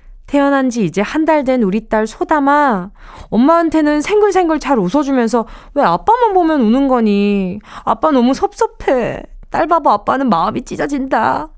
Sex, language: female, Korean